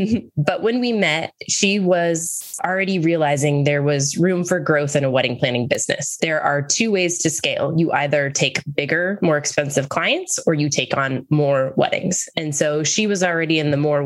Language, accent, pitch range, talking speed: English, American, 145-180 Hz, 190 wpm